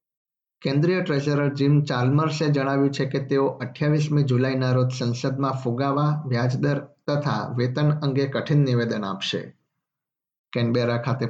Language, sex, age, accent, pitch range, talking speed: Gujarati, male, 50-69, native, 125-140 Hz, 110 wpm